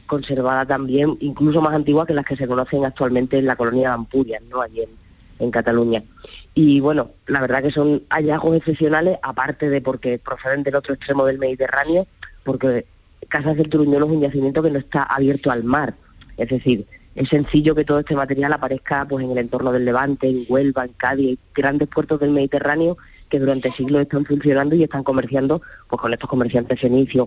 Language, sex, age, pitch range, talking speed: Spanish, female, 20-39, 130-150 Hz, 190 wpm